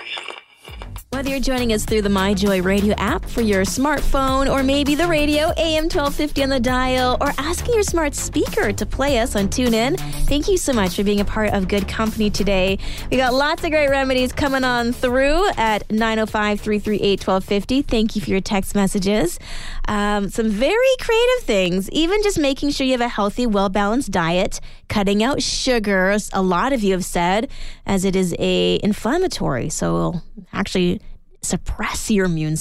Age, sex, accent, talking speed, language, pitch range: 20-39, female, American, 175 wpm, English, 195-265 Hz